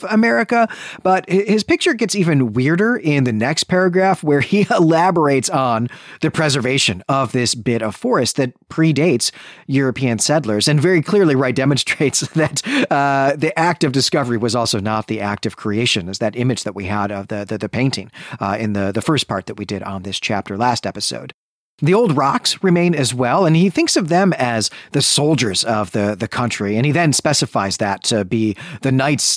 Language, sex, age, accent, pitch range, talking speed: English, male, 40-59, American, 110-165 Hz, 195 wpm